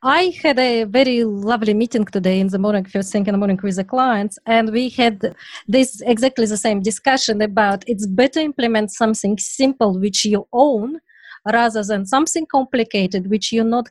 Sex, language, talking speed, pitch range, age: female, English, 180 wpm, 205-265 Hz, 20-39